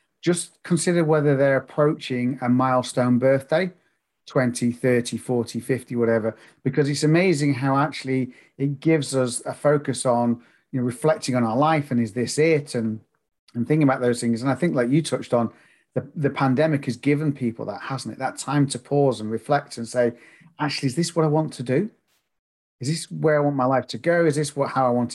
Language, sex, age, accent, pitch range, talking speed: English, male, 40-59, British, 120-145 Hz, 210 wpm